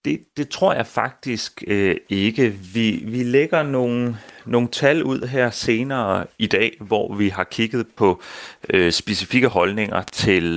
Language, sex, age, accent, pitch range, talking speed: Danish, male, 30-49, native, 95-120 Hz, 155 wpm